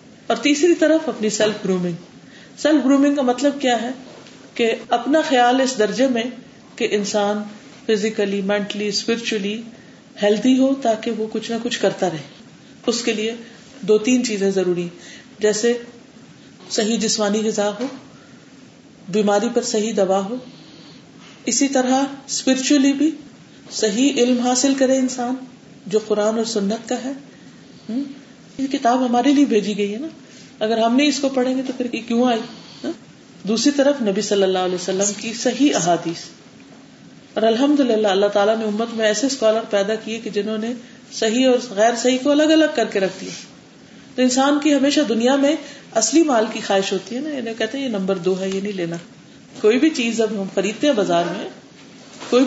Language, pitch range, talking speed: Urdu, 210-265 Hz, 170 wpm